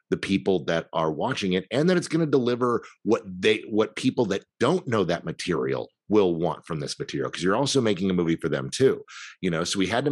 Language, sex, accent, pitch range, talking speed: English, male, American, 80-100 Hz, 245 wpm